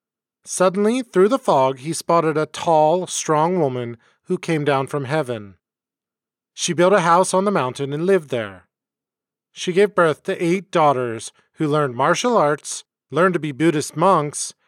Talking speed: 165 wpm